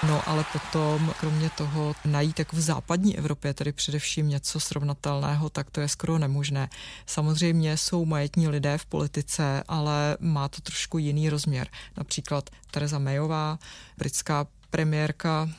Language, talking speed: Czech, 140 wpm